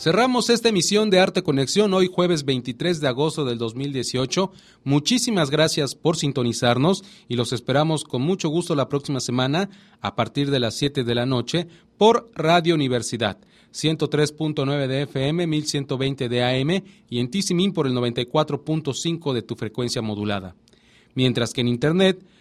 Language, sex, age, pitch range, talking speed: English, male, 40-59, 125-175 Hz, 155 wpm